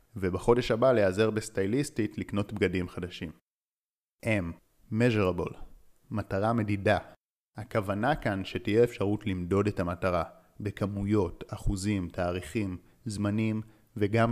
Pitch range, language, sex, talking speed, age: 95-110 Hz, Hebrew, male, 95 wpm, 30-49